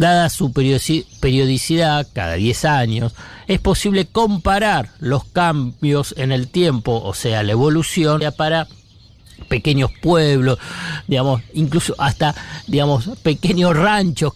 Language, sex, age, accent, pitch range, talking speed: Spanish, male, 50-69, Argentinian, 120-165 Hz, 115 wpm